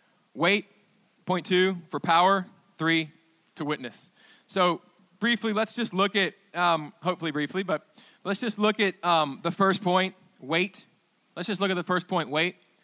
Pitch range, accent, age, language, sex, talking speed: 165-205 Hz, American, 20-39, English, male, 165 wpm